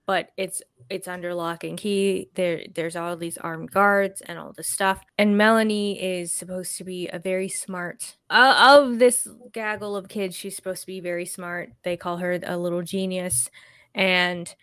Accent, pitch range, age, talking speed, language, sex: American, 175-200 Hz, 20-39, 185 wpm, English, female